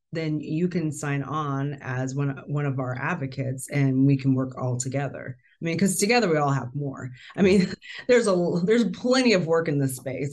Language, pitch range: English, 135-165 Hz